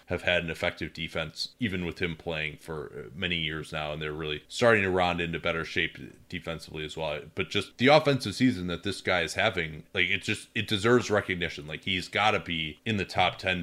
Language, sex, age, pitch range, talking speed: English, male, 30-49, 85-100 Hz, 220 wpm